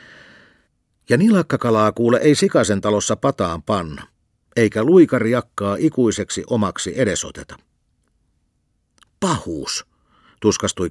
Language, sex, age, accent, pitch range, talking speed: Finnish, male, 50-69, native, 85-115 Hz, 90 wpm